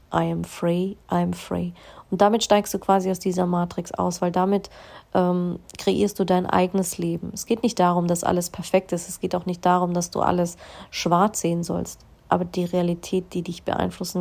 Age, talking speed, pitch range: 30-49, 205 wpm, 175-200 Hz